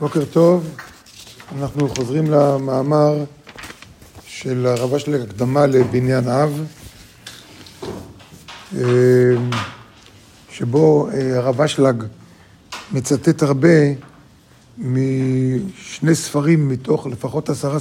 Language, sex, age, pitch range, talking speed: Hebrew, male, 50-69, 125-150 Hz, 70 wpm